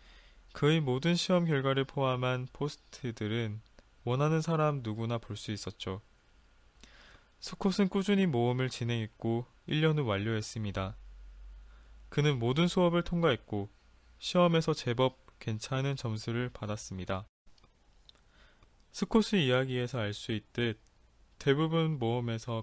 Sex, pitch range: male, 105-135 Hz